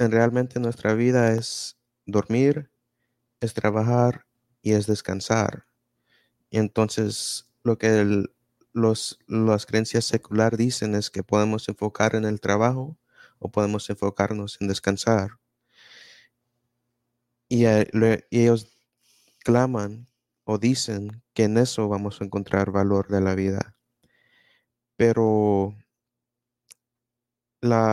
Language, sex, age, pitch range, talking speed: Spanish, male, 30-49, 105-120 Hz, 105 wpm